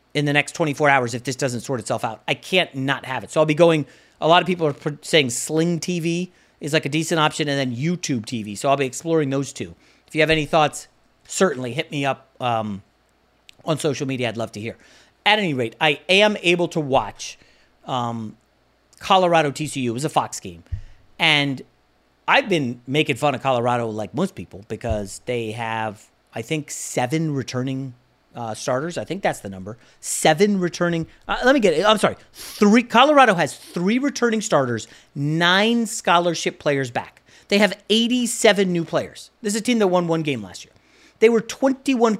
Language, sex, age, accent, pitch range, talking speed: English, male, 40-59, American, 130-195 Hz, 195 wpm